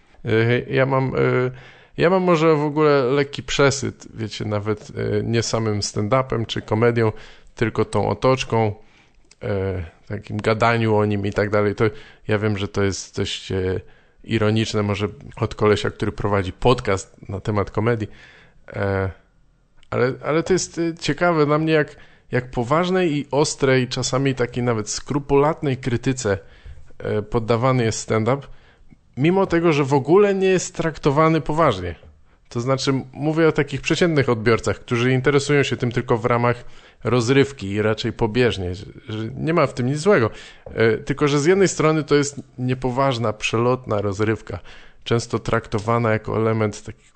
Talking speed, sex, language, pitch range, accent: 140 wpm, male, English, 105-140 Hz, Polish